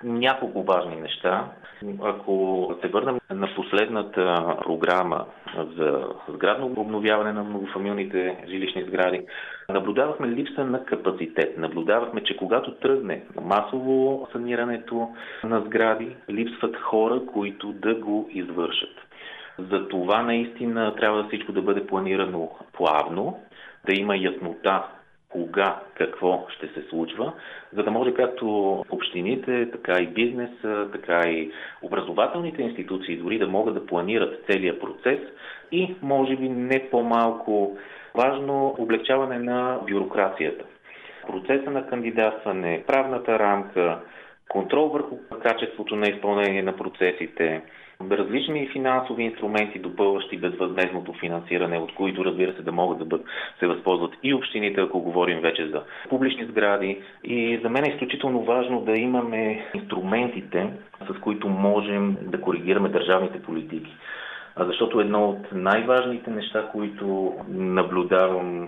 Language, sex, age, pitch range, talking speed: Bulgarian, male, 40-59, 95-125 Hz, 120 wpm